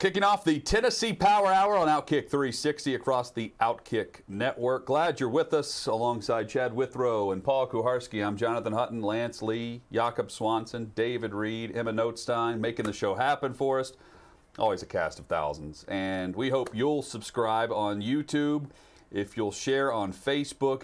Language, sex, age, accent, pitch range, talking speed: English, male, 40-59, American, 110-140 Hz, 165 wpm